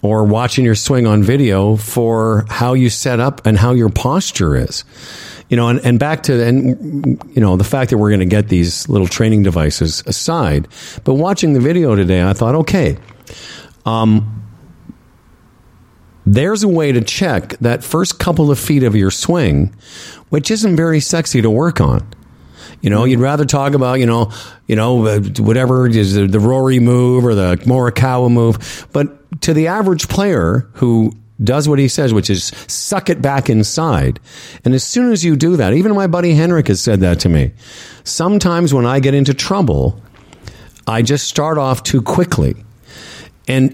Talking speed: 180 wpm